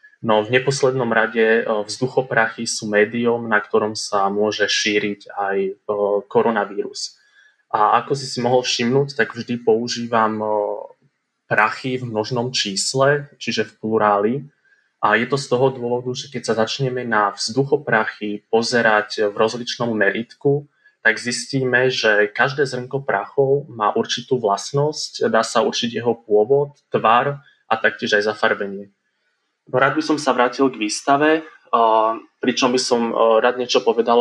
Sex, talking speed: male, 135 wpm